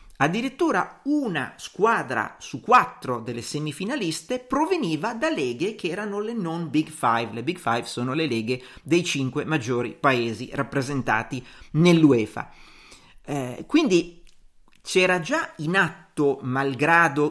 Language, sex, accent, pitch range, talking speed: Italian, male, native, 135-180 Hz, 120 wpm